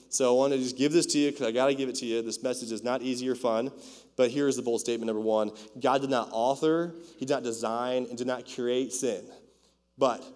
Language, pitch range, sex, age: English, 115-130 Hz, male, 20-39